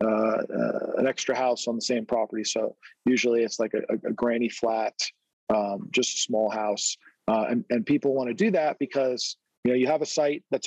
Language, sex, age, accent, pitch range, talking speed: English, male, 40-59, American, 120-140 Hz, 220 wpm